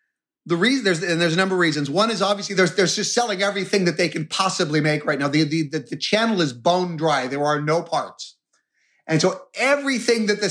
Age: 30-49